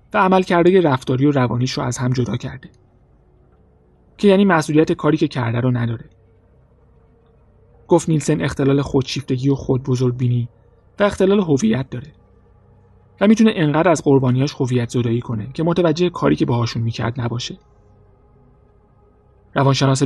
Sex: male